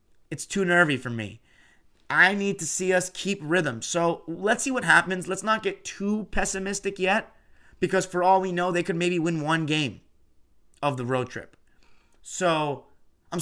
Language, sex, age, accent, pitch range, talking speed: English, male, 30-49, American, 135-180 Hz, 180 wpm